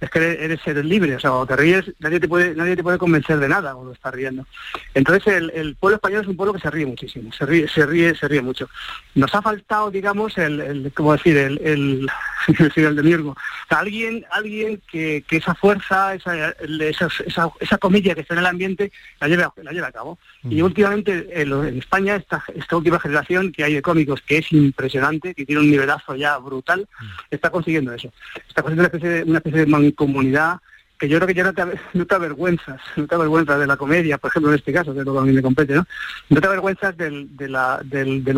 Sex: male